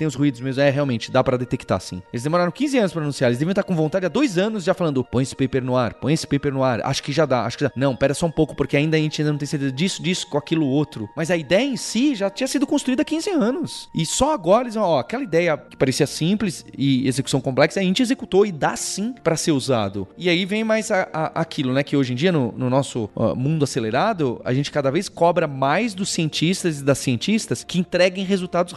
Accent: Brazilian